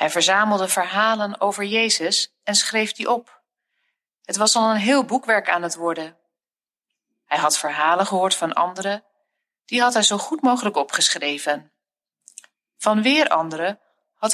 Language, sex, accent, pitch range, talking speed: Dutch, female, Dutch, 170-235 Hz, 145 wpm